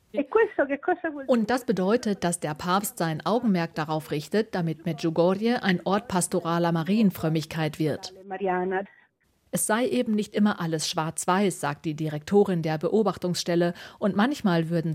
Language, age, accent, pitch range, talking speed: German, 40-59, German, 160-195 Hz, 130 wpm